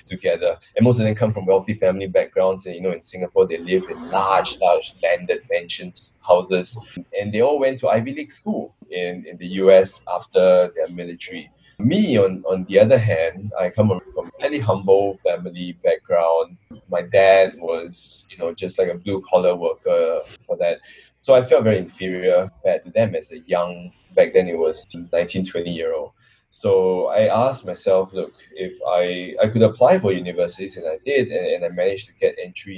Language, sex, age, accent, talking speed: English, male, 10-29, Malaysian, 190 wpm